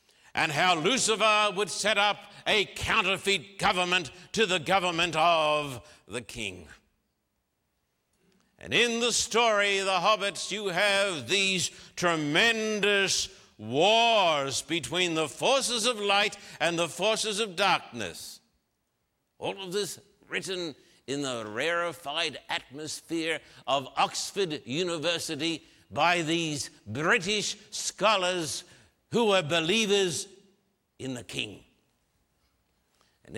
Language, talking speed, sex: English, 105 wpm, male